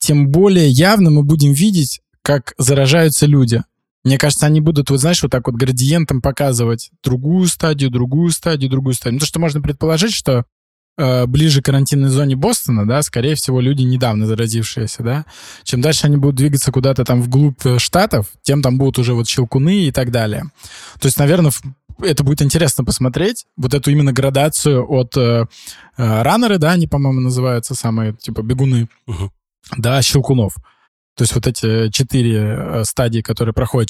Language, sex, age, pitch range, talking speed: Russian, male, 20-39, 120-145 Hz, 165 wpm